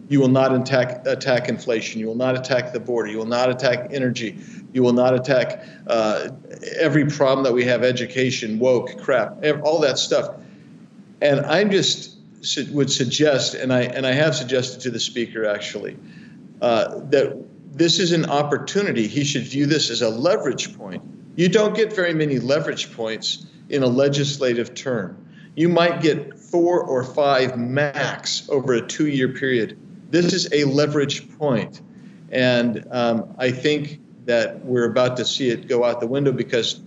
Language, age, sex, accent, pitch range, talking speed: English, 50-69, male, American, 120-145 Hz, 170 wpm